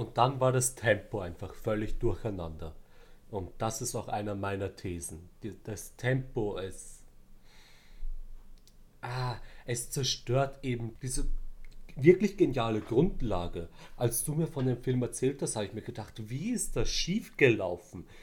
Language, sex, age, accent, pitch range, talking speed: German, male, 40-59, German, 110-135 Hz, 140 wpm